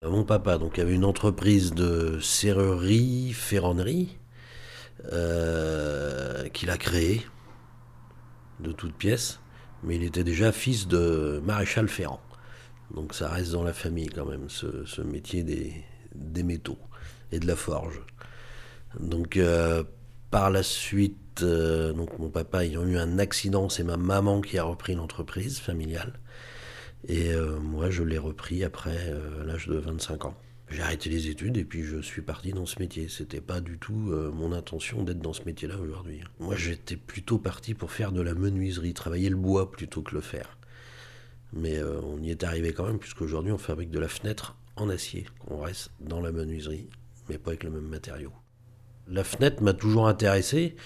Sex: male